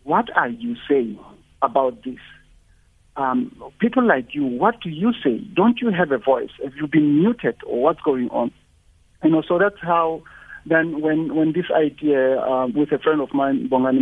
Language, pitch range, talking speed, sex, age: English, 140-195 Hz, 190 wpm, male, 50-69